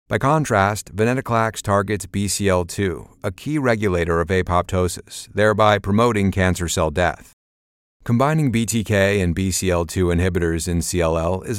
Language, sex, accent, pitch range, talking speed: English, male, American, 90-115 Hz, 120 wpm